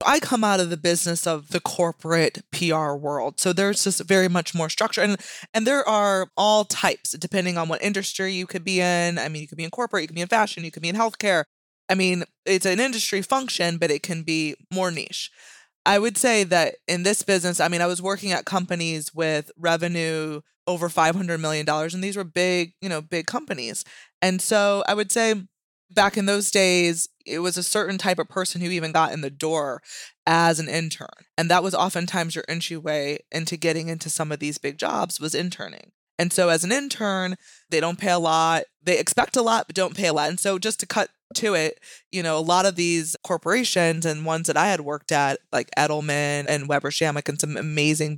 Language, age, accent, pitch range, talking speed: English, 20-39, American, 160-195 Hz, 220 wpm